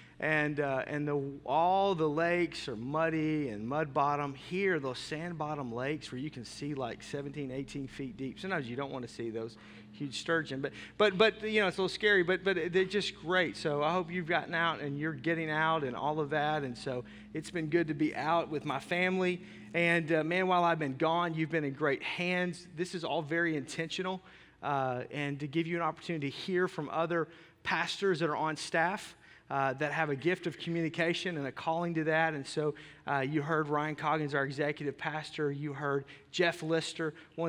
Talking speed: 215 wpm